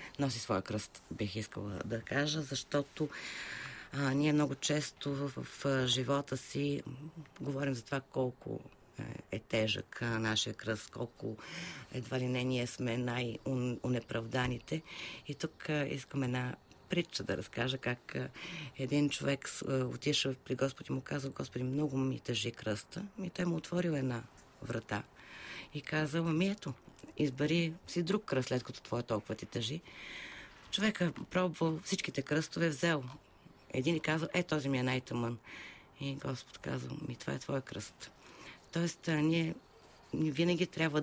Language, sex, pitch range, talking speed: Bulgarian, female, 120-155 Hz, 150 wpm